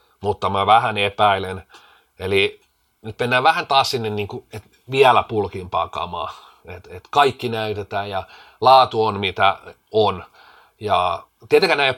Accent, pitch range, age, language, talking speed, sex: native, 100-140 Hz, 30-49, Finnish, 135 wpm, male